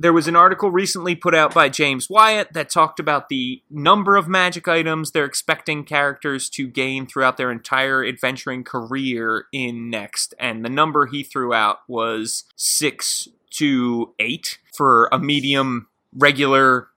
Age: 20-39